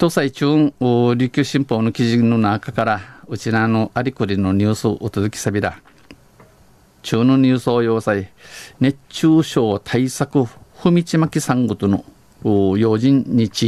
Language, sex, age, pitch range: Japanese, male, 50-69, 105-135 Hz